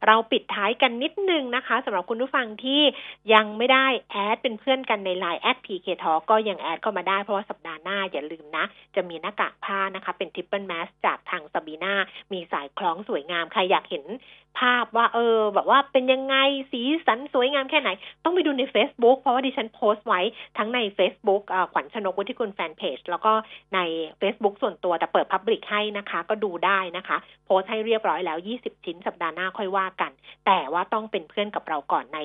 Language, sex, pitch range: Thai, female, 180-235 Hz